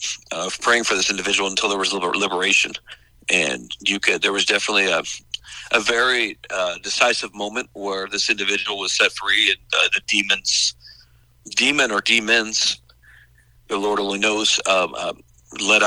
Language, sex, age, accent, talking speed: English, male, 40-59, American, 160 wpm